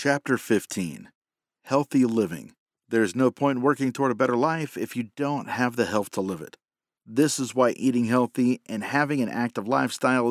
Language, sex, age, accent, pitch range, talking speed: English, male, 50-69, American, 115-145 Hz, 185 wpm